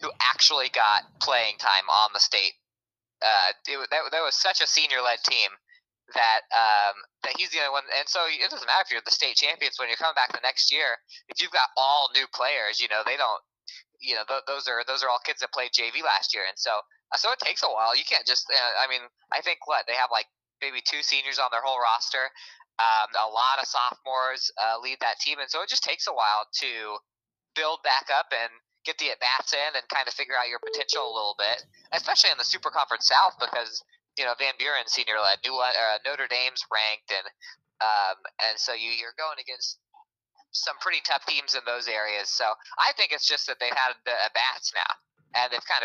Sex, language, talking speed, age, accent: male, English, 225 wpm, 20-39, American